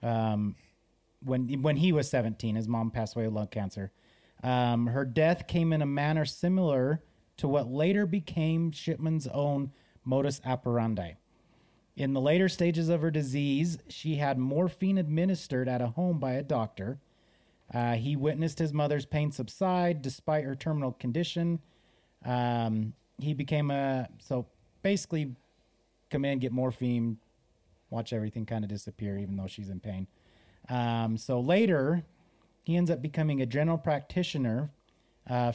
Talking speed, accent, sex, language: 150 wpm, American, male, English